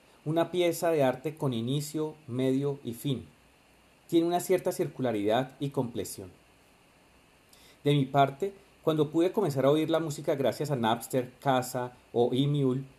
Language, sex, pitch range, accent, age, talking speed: Spanish, male, 130-155 Hz, Colombian, 40-59, 145 wpm